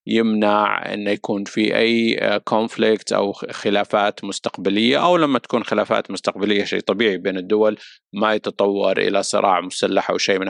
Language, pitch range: Arabic, 95-110 Hz